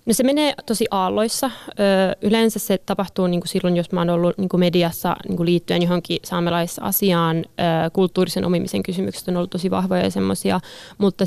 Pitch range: 170-190 Hz